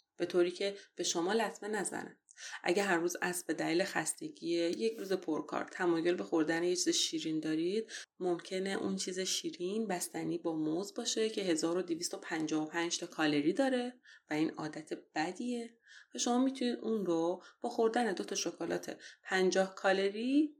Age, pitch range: 30-49, 165-215 Hz